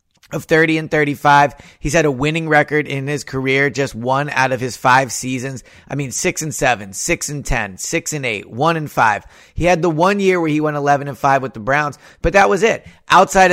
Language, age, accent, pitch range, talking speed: English, 30-49, American, 130-160 Hz, 230 wpm